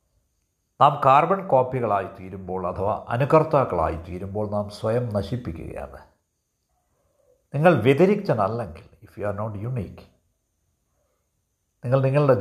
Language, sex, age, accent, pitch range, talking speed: Malayalam, male, 50-69, native, 90-135 Hz, 90 wpm